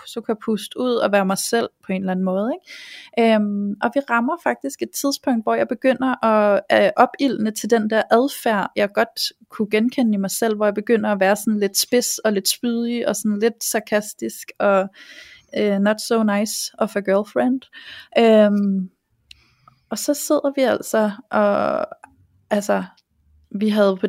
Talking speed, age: 175 wpm, 30-49